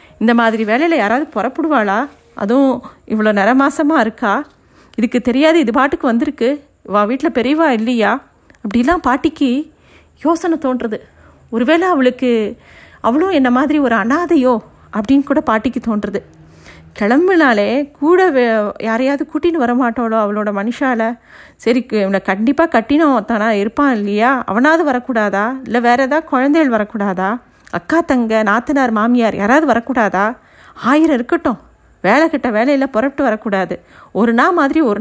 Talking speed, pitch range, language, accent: 125 wpm, 230-300 Hz, Tamil, native